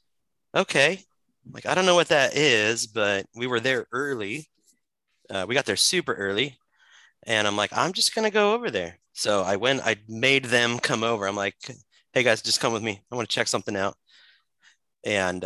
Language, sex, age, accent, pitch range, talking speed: English, male, 30-49, American, 100-125 Hz, 200 wpm